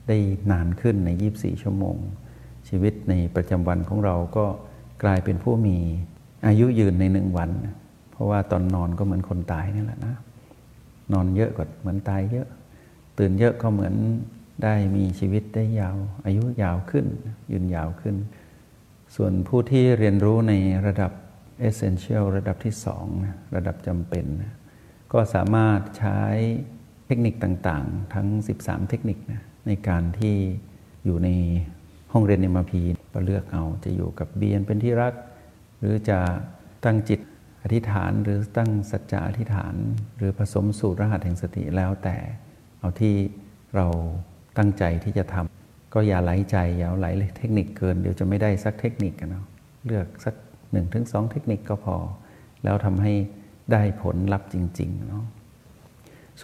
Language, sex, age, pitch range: Thai, male, 60-79, 95-110 Hz